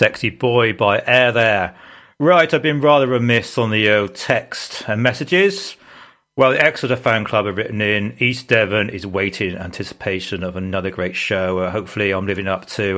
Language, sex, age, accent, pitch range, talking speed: English, male, 40-59, British, 95-125 Hz, 185 wpm